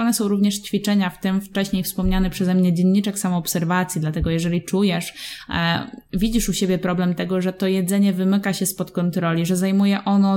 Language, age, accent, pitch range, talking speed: Polish, 20-39, native, 185-215 Hz, 180 wpm